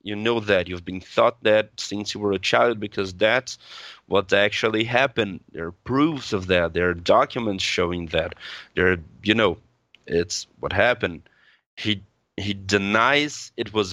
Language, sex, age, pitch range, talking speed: English, male, 30-49, 95-115 Hz, 165 wpm